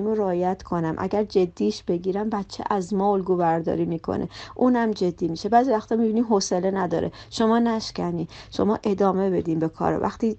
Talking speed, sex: 150 wpm, female